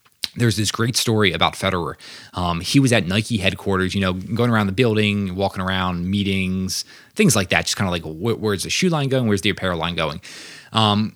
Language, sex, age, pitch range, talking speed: English, male, 20-39, 95-125 Hz, 215 wpm